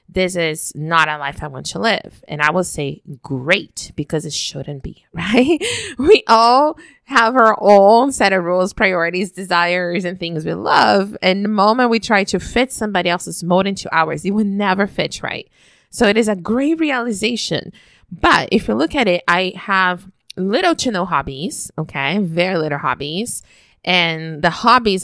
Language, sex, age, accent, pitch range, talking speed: English, female, 20-39, American, 160-215 Hz, 180 wpm